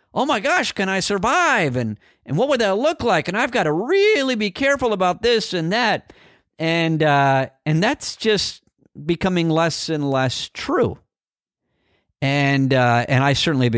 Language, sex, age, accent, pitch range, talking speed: English, male, 50-69, American, 110-150 Hz, 175 wpm